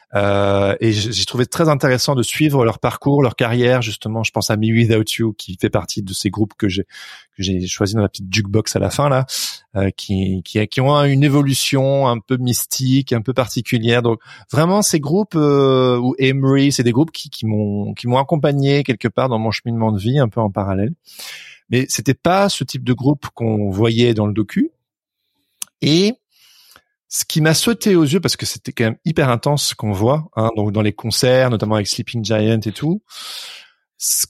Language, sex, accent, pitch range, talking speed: French, male, French, 110-150 Hz, 210 wpm